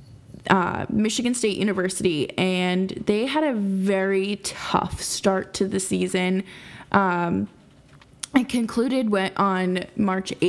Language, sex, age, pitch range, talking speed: English, female, 20-39, 190-220 Hz, 115 wpm